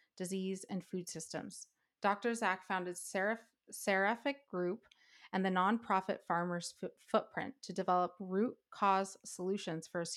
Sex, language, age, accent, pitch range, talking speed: female, English, 30-49, American, 180-210 Hz, 125 wpm